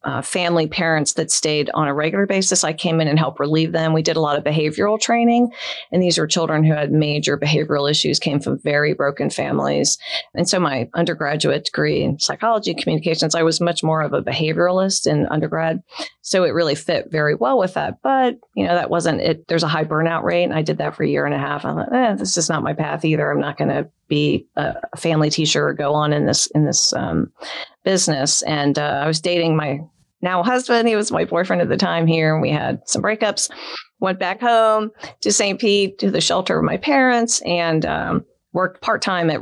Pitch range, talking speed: 155-190 Hz, 225 wpm